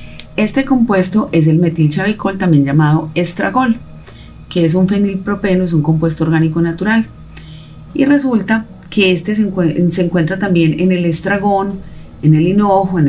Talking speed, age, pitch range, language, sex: 140 wpm, 30-49, 155-200 Hz, Spanish, female